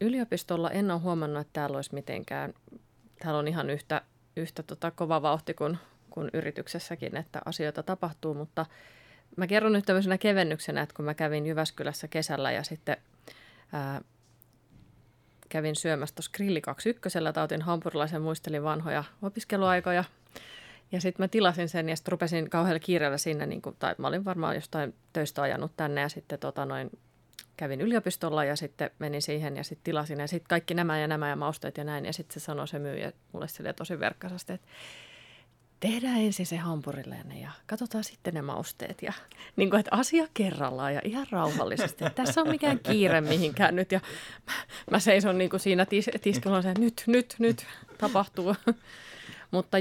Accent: native